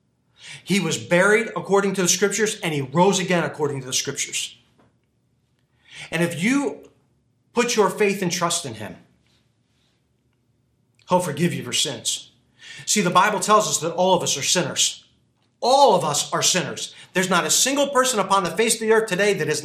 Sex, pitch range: male, 140-200 Hz